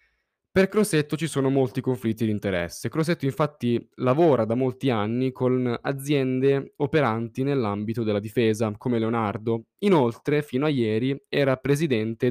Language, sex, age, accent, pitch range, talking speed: Italian, male, 10-29, native, 115-140 Hz, 135 wpm